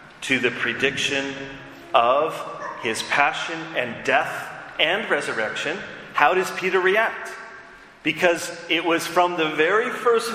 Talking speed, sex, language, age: 120 wpm, male, English, 40-59